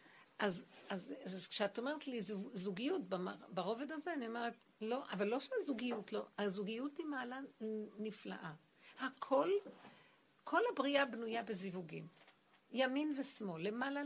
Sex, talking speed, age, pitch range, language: female, 120 wpm, 60-79, 195-255 Hz, Hebrew